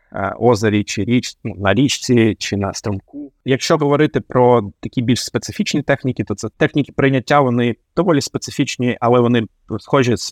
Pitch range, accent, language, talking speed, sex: 105-130 Hz, native, Ukrainian, 155 wpm, male